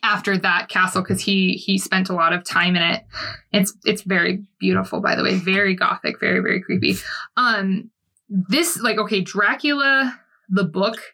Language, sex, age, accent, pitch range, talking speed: English, female, 20-39, American, 190-220 Hz, 170 wpm